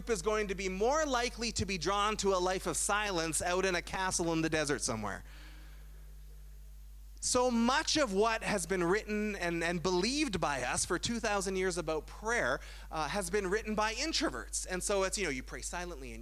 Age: 30-49